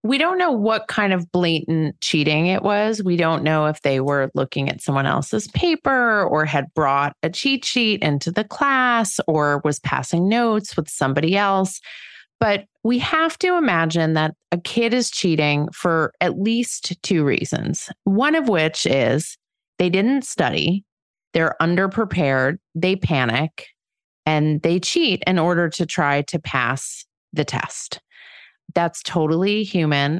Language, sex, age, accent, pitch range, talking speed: English, female, 30-49, American, 150-205 Hz, 155 wpm